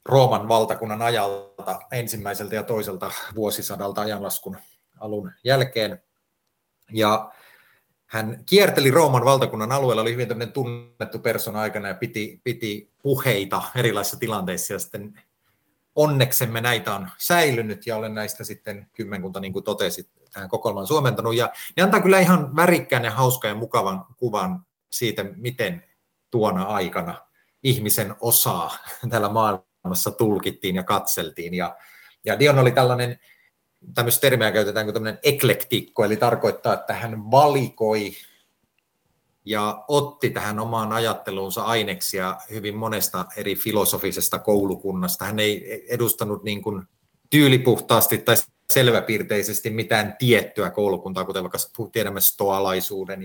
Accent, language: native, Finnish